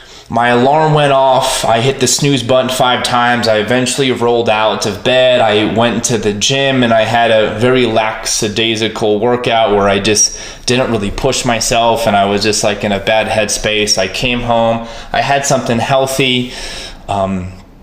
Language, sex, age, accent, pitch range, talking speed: English, male, 20-39, American, 110-130 Hz, 180 wpm